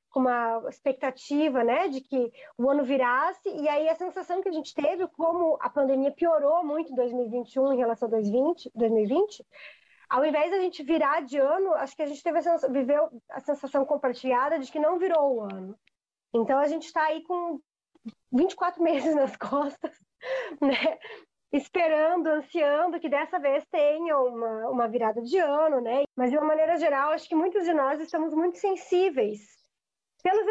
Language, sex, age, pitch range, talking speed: English, female, 20-39, 260-315 Hz, 175 wpm